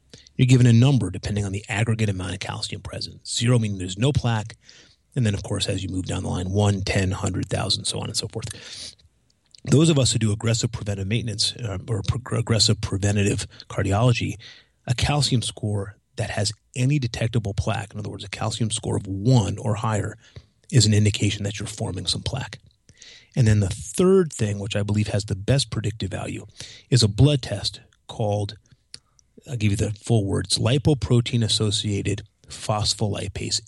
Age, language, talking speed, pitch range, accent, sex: 30-49, English, 180 wpm, 105-125 Hz, American, male